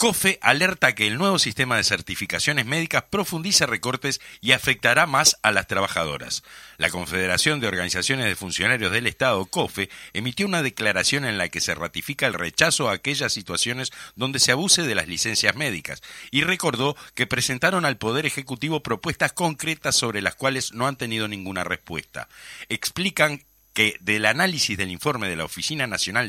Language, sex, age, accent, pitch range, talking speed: Spanish, male, 50-69, Argentinian, 105-150 Hz, 170 wpm